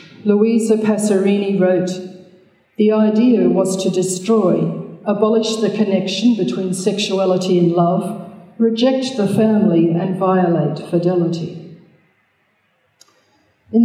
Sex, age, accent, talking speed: female, 50-69, Australian, 95 wpm